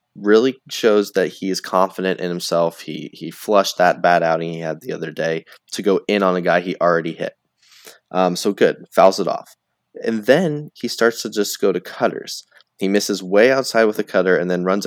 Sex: male